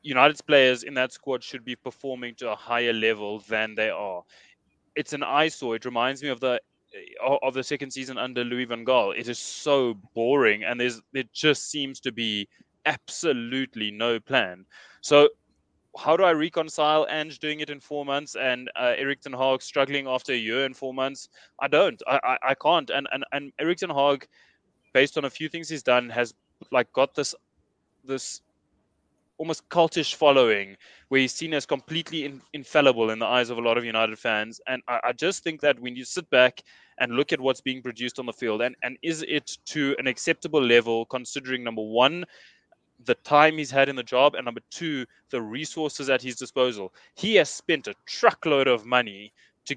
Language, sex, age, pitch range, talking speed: English, male, 20-39, 120-145 Hz, 195 wpm